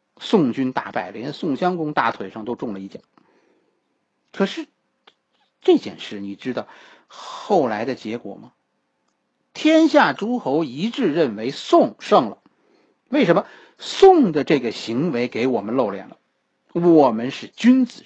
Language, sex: Chinese, male